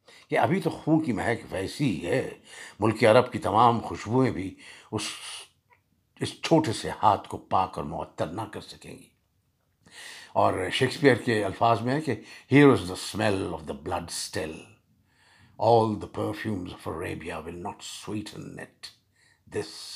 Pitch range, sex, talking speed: 105-155 Hz, male, 145 wpm